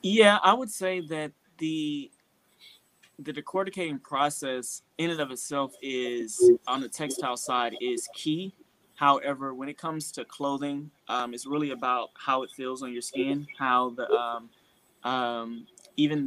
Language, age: English, 20-39